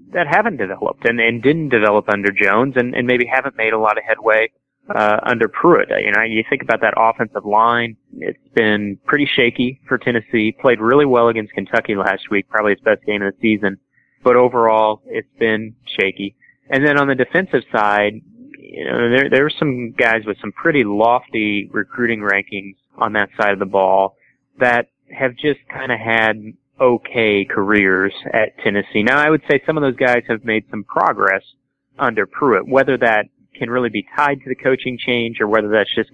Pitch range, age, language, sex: 105-125 Hz, 30-49, English, male